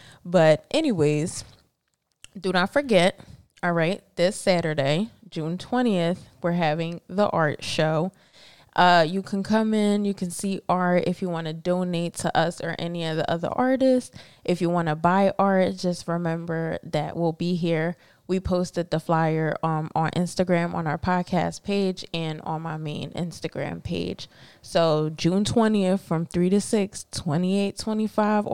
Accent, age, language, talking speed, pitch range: American, 20-39, English, 160 wpm, 165-205 Hz